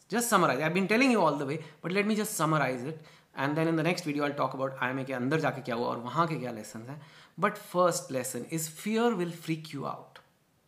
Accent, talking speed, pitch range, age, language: Indian, 220 wpm, 140-185 Hz, 30-49, English